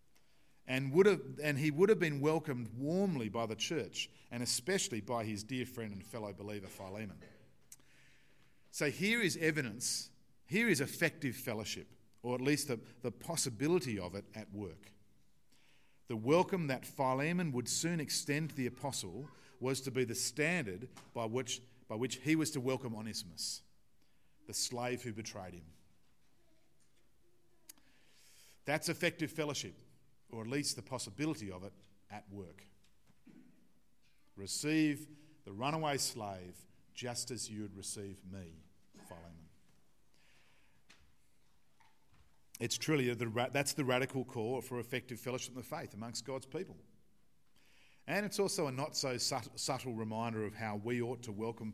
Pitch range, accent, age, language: 110-145 Hz, Australian, 50-69, English